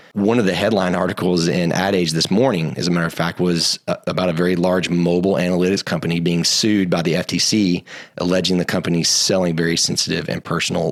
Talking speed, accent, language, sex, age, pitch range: 190 wpm, American, English, male, 30-49, 85-95 Hz